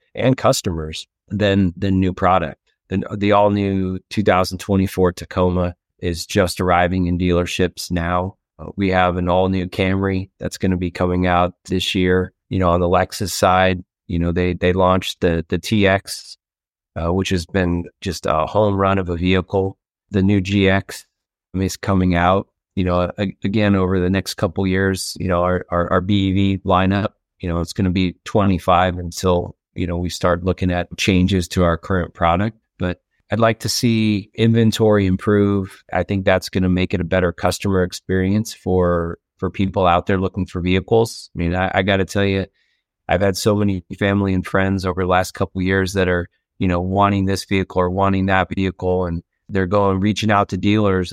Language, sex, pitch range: English, male, 90-100 Hz